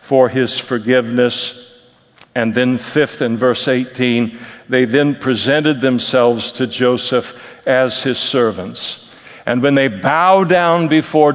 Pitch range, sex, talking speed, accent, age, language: 130-180 Hz, male, 125 wpm, American, 60-79, English